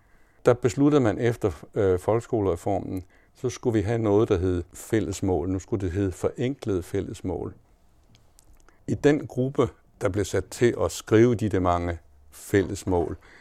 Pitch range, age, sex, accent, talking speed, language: 95-125 Hz, 60-79, male, native, 150 wpm, Danish